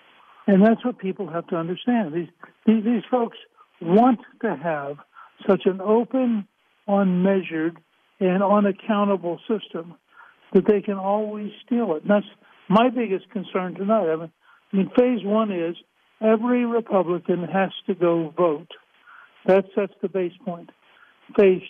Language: English